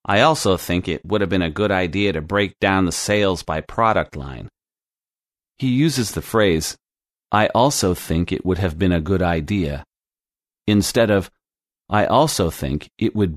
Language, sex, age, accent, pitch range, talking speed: English, male, 40-59, American, 80-105 Hz, 175 wpm